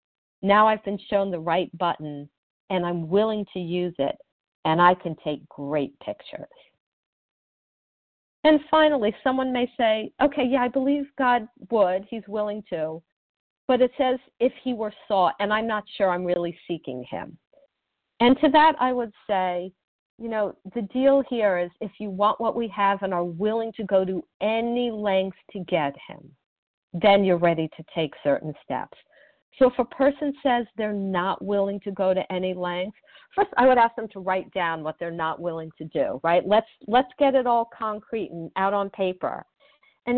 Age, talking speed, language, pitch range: 50-69, 185 wpm, English, 175-245 Hz